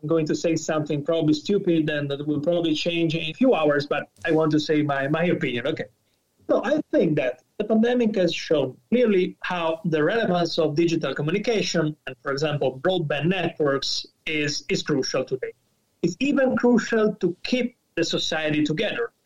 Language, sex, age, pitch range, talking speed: English, male, 30-49, 160-210 Hz, 180 wpm